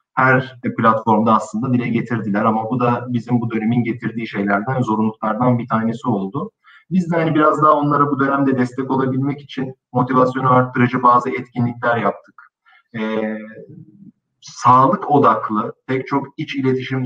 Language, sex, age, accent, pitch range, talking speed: Turkish, male, 50-69, native, 115-140 Hz, 135 wpm